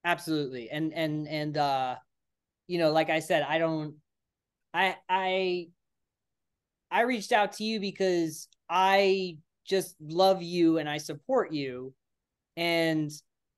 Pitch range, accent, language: 140-165 Hz, American, English